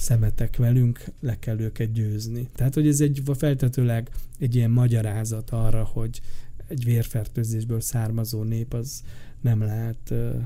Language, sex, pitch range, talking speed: Hungarian, male, 115-130 Hz, 130 wpm